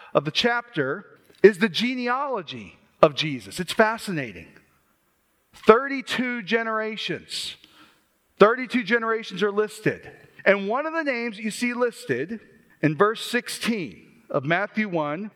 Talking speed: 115 wpm